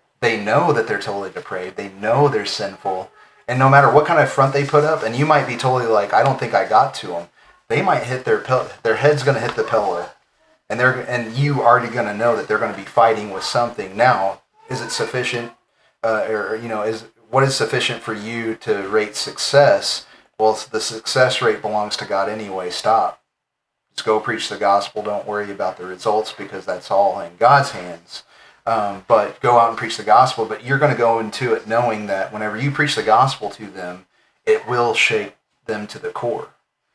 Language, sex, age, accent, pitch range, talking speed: English, male, 30-49, American, 105-130 Hz, 220 wpm